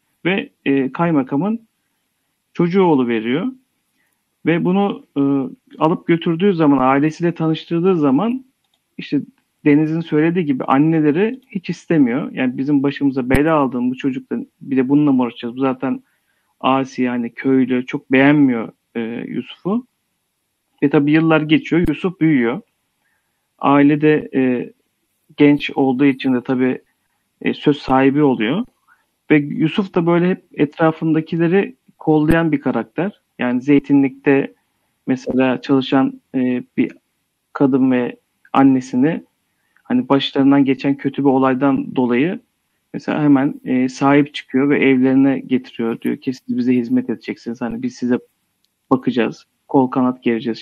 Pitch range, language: 130-175 Hz, Turkish